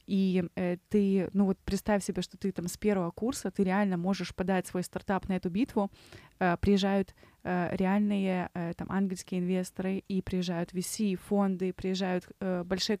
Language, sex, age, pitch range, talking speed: Russian, female, 20-39, 185-210 Hz, 170 wpm